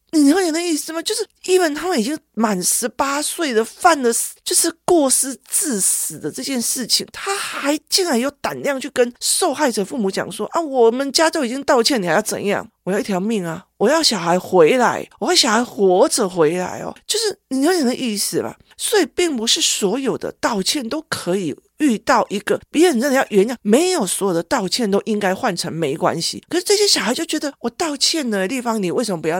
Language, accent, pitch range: Chinese, native, 200-320 Hz